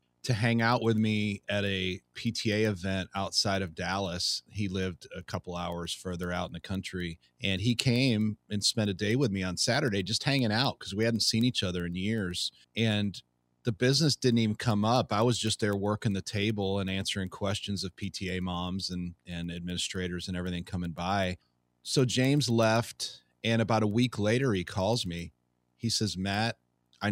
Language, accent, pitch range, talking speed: English, American, 90-110 Hz, 190 wpm